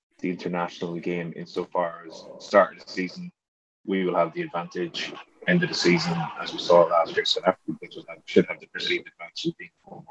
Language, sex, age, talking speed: English, male, 30-49, 210 wpm